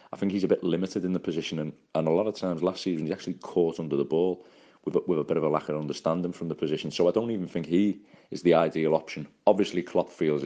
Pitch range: 75-90 Hz